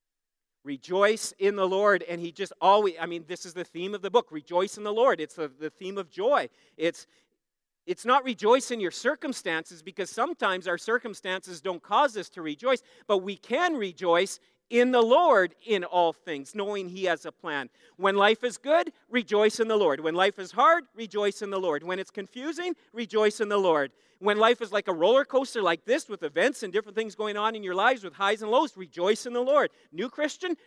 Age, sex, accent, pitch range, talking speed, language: 40-59, male, American, 180-270 Hz, 215 wpm, English